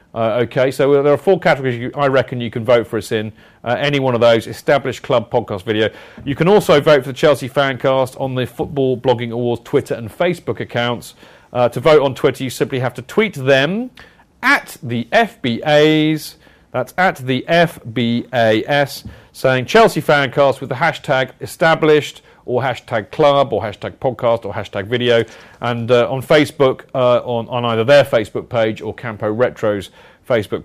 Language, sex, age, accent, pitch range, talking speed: English, male, 40-59, British, 115-145 Hz, 175 wpm